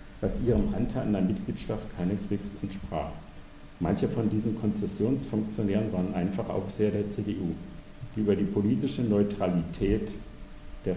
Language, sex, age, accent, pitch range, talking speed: German, male, 60-79, German, 90-105 Hz, 130 wpm